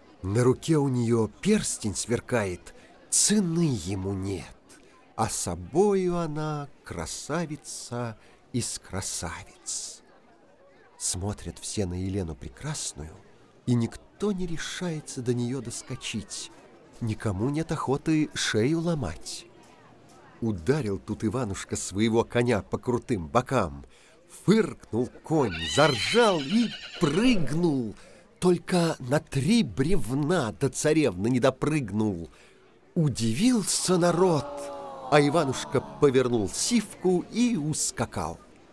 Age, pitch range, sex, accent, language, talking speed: 50-69, 110-180 Hz, male, native, Russian, 95 wpm